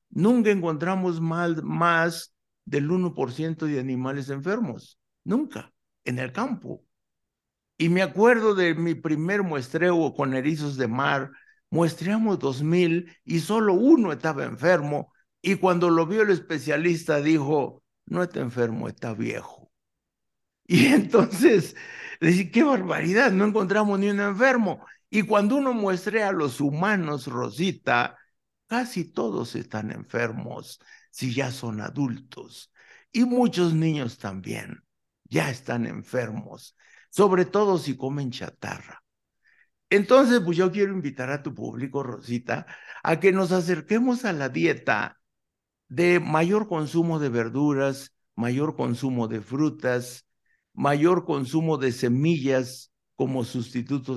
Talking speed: 120 wpm